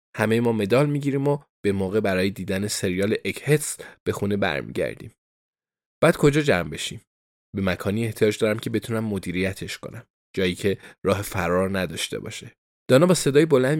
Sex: male